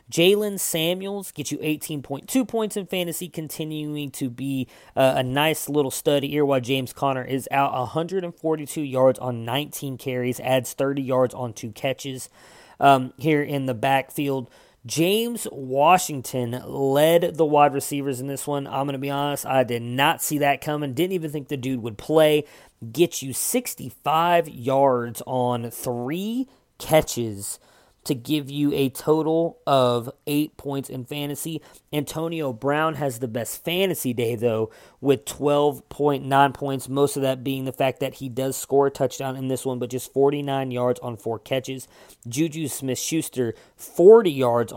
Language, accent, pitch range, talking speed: English, American, 130-150 Hz, 160 wpm